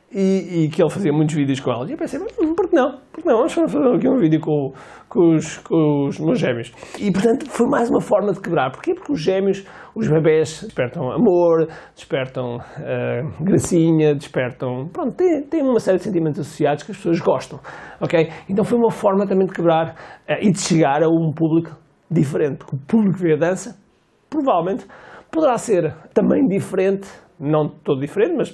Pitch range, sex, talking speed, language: 155-205 Hz, male, 200 wpm, Portuguese